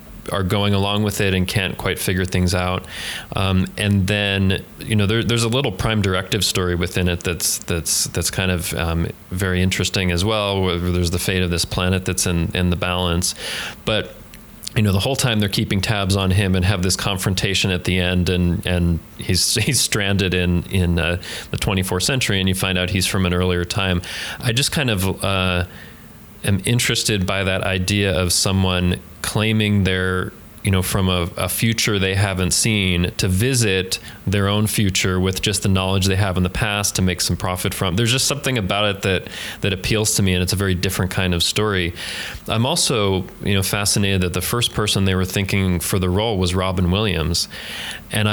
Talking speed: 200 wpm